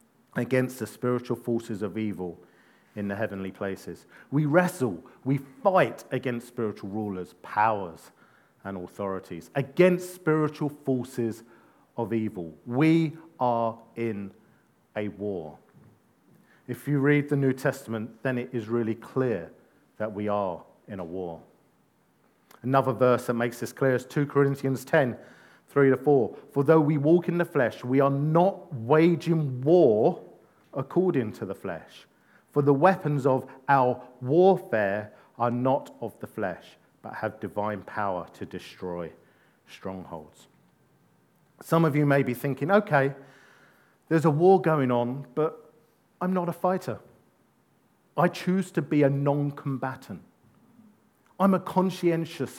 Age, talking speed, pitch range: 40-59, 135 wpm, 110-150 Hz